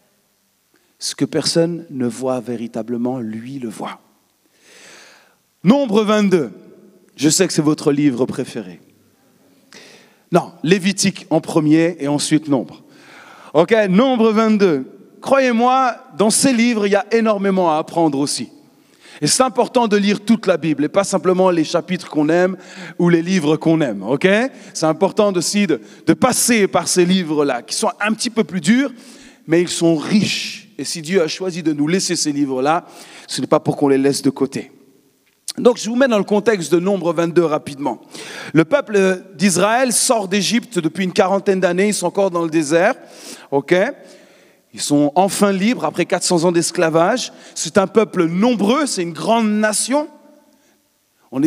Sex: male